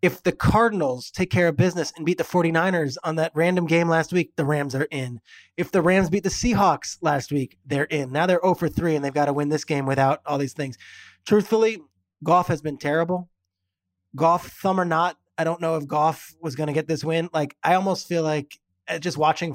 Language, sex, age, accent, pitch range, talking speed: English, male, 20-39, American, 145-175 Hz, 225 wpm